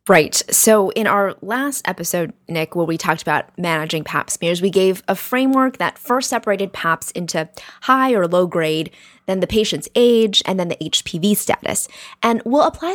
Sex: female